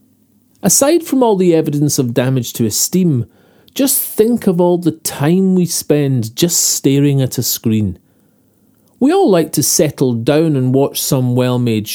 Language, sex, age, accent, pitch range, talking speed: English, male, 40-59, British, 125-185 Hz, 160 wpm